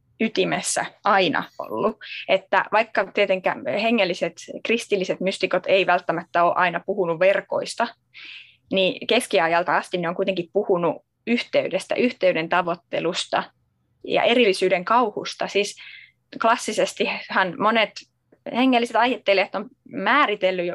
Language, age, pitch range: Finnish, 20-39, 180-235 Hz